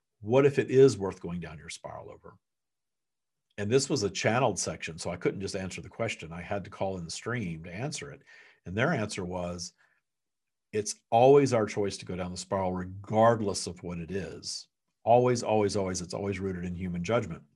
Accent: American